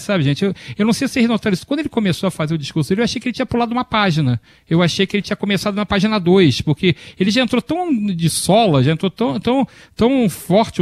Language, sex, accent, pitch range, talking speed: Portuguese, male, Brazilian, 155-210 Hz, 260 wpm